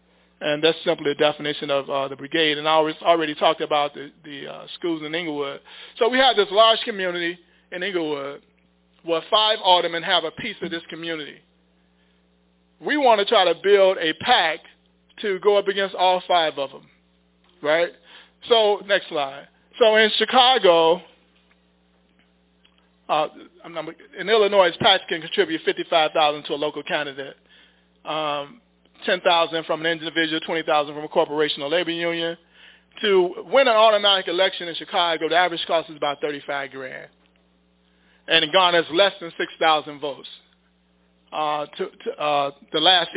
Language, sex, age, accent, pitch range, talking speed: English, male, 40-59, American, 140-185 Hz, 155 wpm